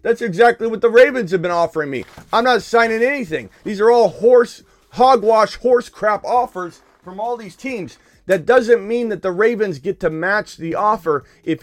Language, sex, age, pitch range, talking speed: English, male, 30-49, 135-195 Hz, 190 wpm